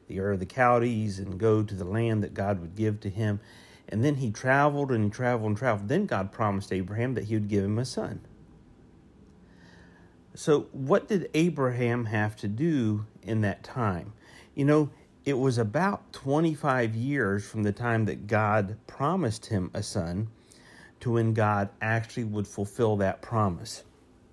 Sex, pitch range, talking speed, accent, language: male, 100-130 Hz, 170 wpm, American, English